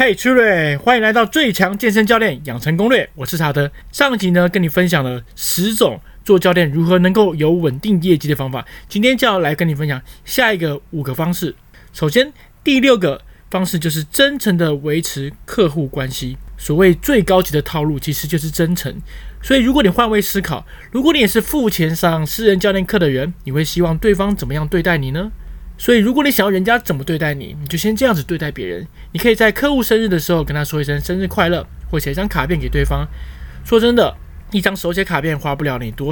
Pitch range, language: 145-205 Hz, Chinese